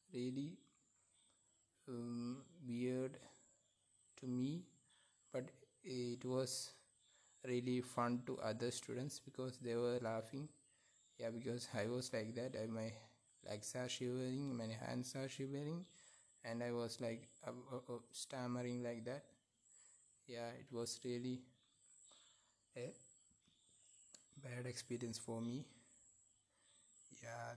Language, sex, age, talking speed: English, male, 20-39, 110 wpm